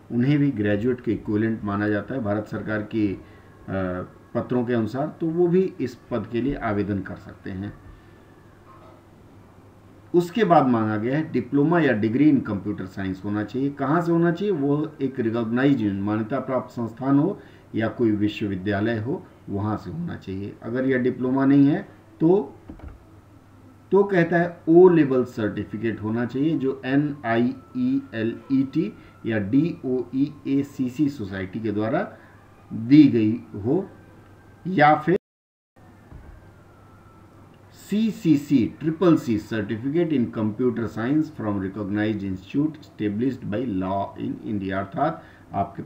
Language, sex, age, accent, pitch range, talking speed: Hindi, male, 50-69, native, 100-140 Hz, 140 wpm